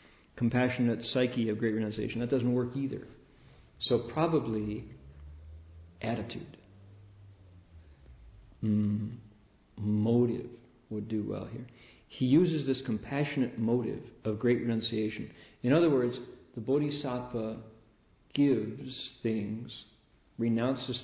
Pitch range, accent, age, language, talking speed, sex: 105-125 Hz, American, 50-69, English, 95 wpm, male